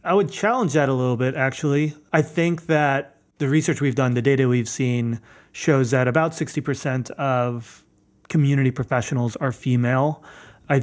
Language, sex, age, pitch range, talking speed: English, male, 30-49, 120-145 Hz, 165 wpm